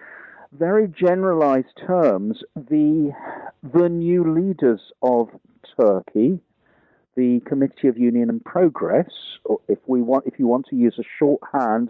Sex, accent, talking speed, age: male, British, 130 wpm, 50-69